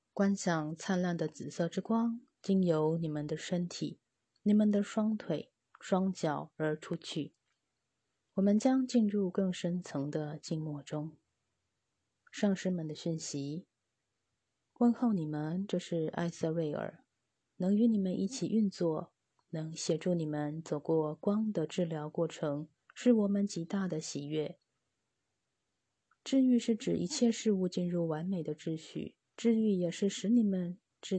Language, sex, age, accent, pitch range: Chinese, female, 20-39, native, 155-205 Hz